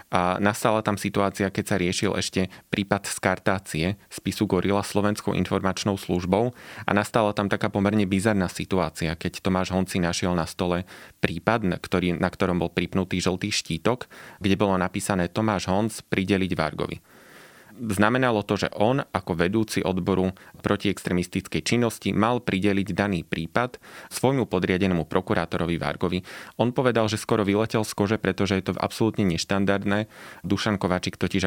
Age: 30-49